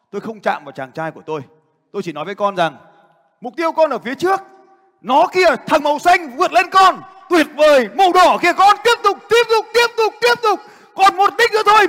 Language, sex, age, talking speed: Vietnamese, male, 30-49, 235 wpm